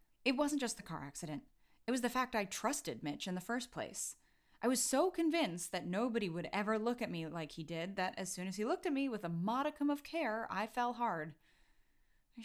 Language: English